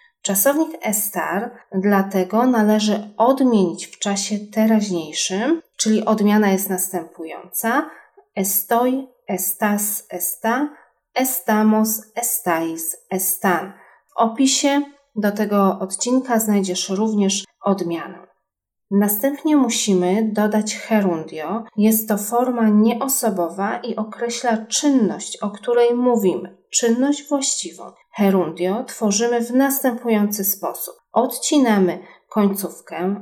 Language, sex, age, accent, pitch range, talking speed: Polish, female, 30-49, native, 190-235 Hz, 90 wpm